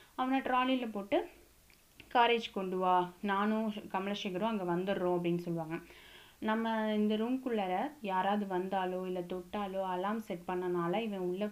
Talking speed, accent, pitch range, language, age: 125 wpm, native, 185-230 Hz, Tamil, 20-39